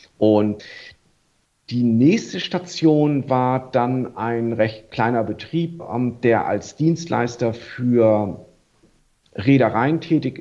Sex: male